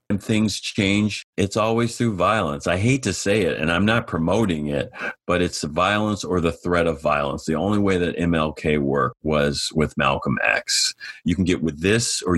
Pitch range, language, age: 80-105 Hz, English, 40-59